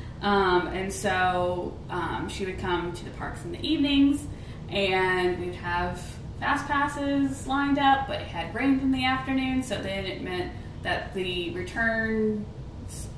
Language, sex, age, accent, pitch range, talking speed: English, female, 20-39, American, 170-260 Hz, 155 wpm